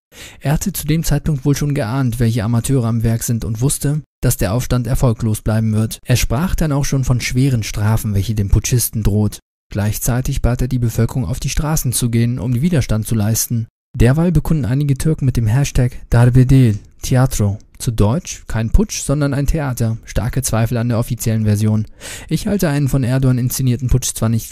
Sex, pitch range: male, 115-135 Hz